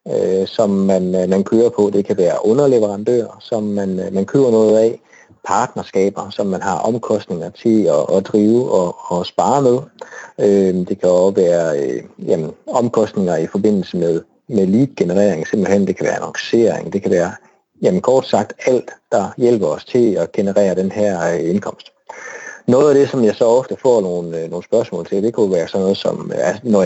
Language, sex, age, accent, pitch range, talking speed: Danish, male, 30-49, native, 95-115 Hz, 175 wpm